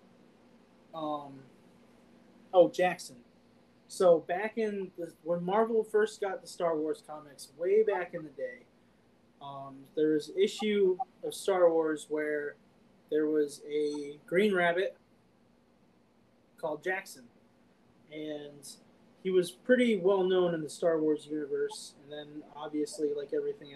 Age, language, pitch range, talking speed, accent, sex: 20-39, English, 150-200 Hz, 130 wpm, American, male